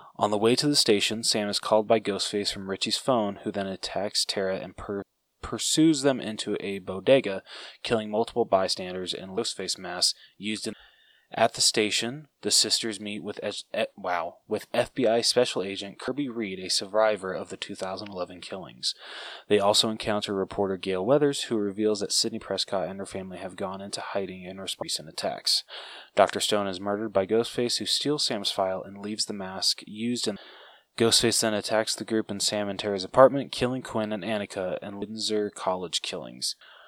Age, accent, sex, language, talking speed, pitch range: 20-39, American, male, English, 180 wpm, 95-115 Hz